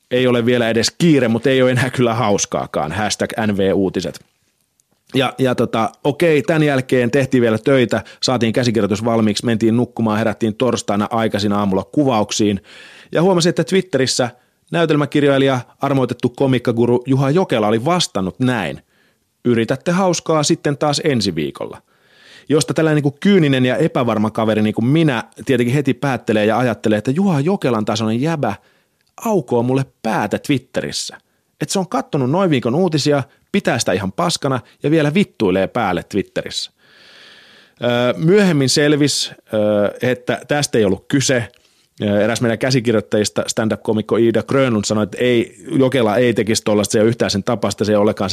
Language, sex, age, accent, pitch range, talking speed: Finnish, male, 30-49, native, 110-145 Hz, 140 wpm